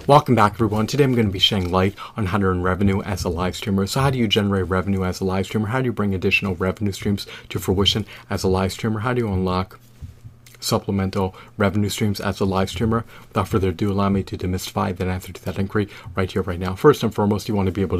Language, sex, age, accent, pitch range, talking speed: English, male, 30-49, American, 95-115 Hz, 255 wpm